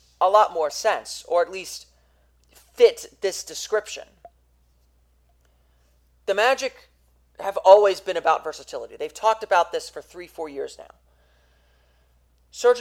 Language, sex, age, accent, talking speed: English, male, 30-49, American, 125 wpm